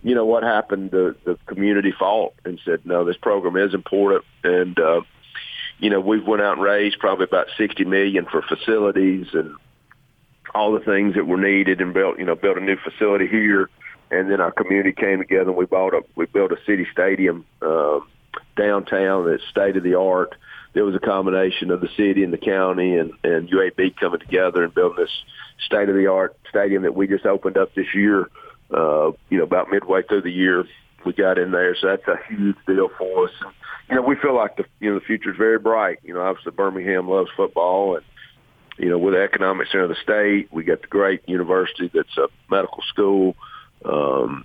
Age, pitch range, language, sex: 50-69, 95-105 Hz, English, male